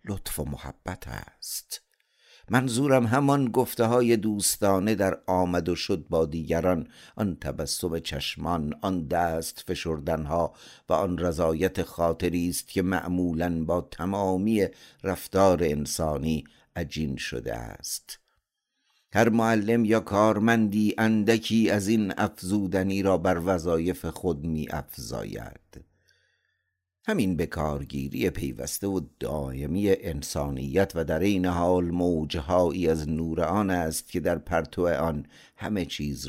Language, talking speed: Persian, 115 wpm